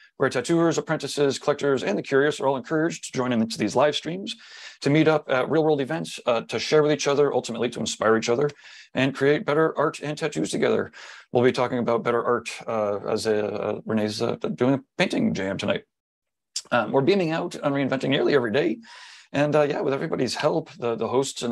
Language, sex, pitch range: English, male, 125-155 Hz